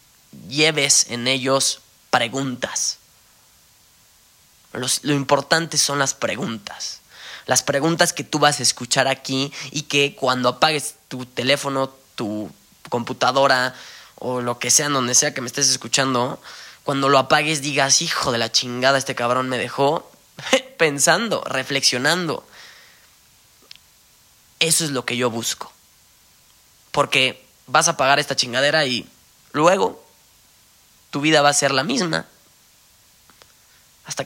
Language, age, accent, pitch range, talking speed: Spanish, 20-39, Mexican, 125-150 Hz, 125 wpm